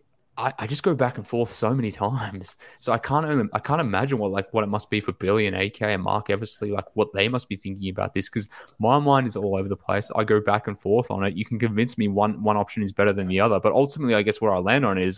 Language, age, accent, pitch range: English, 20-39, Australian, 105-130 Hz